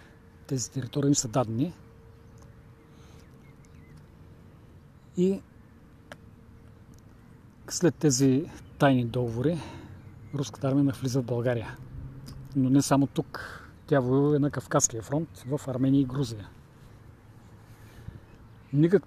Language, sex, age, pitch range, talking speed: Bulgarian, male, 40-59, 115-145 Hz, 90 wpm